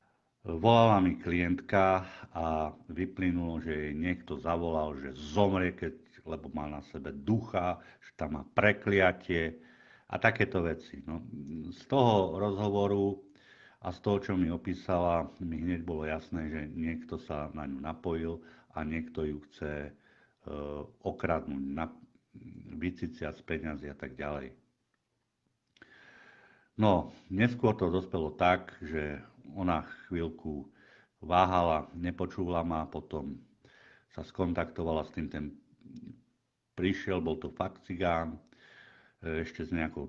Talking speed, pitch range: 125 wpm, 80-100 Hz